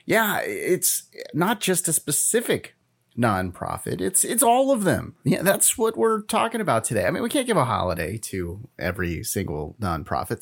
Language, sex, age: English, male, 30-49